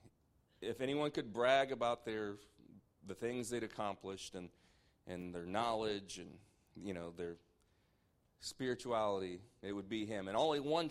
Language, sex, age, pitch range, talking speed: English, male, 40-59, 100-130 Hz, 145 wpm